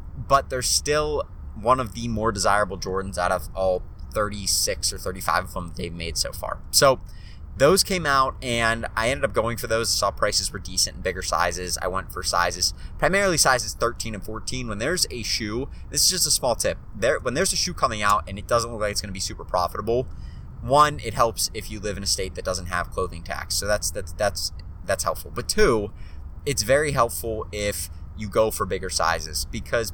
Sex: male